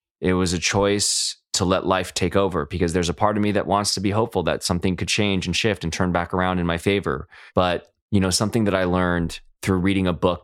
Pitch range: 90-105 Hz